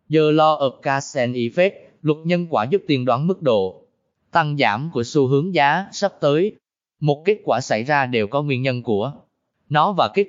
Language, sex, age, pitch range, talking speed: Vietnamese, male, 20-39, 130-180 Hz, 200 wpm